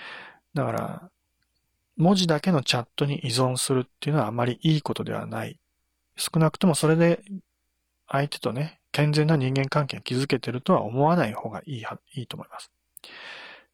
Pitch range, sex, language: 115-155 Hz, male, Japanese